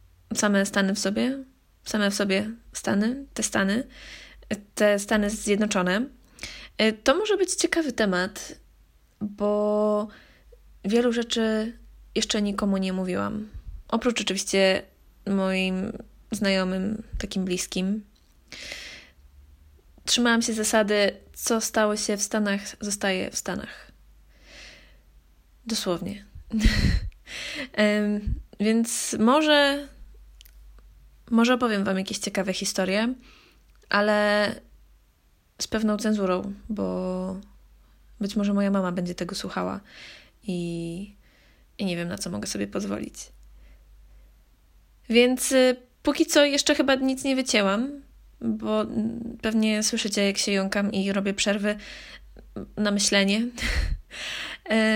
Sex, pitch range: female, 190-225 Hz